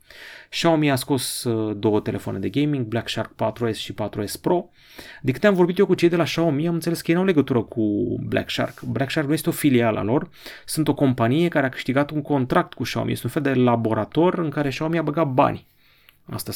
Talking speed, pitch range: 230 wpm, 110-145 Hz